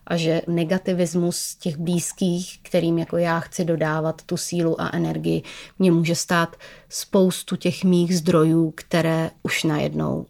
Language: Czech